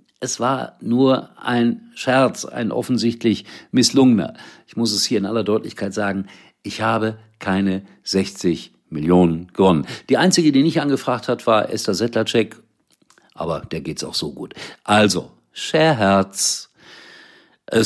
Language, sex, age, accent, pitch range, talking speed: German, male, 50-69, German, 95-125 Hz, 135 wpm